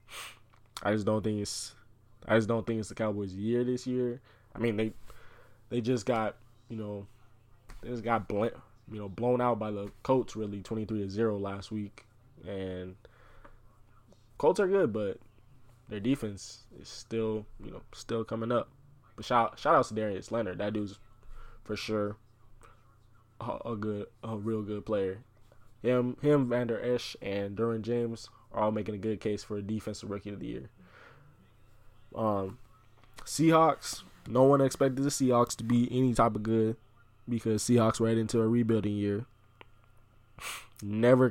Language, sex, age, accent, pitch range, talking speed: English, male, 20-39, American, 105-120 Hz, 165 wpm